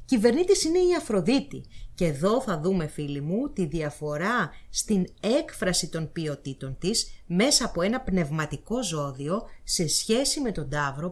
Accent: Greek